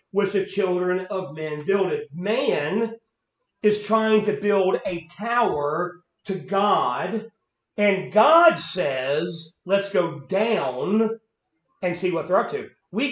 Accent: American